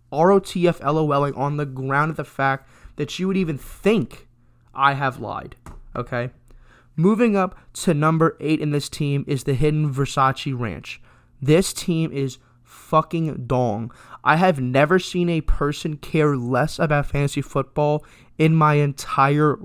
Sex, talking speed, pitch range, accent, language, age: male, 145 wpm, 130-165 Hz, American, English, 20-39